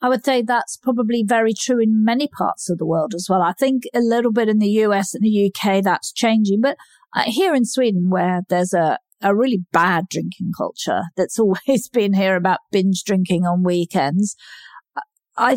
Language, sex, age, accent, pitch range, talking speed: English, female, 50-69, British, 180-235 Hz, 195 wpm